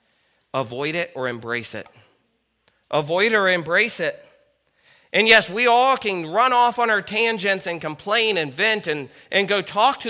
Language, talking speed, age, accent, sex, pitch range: English, 165 wpm, 40-59, American, male, 130-195 Hz